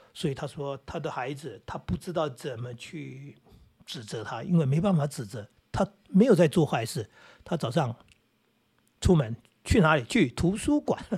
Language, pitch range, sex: Chinese, 135-175 Hz, male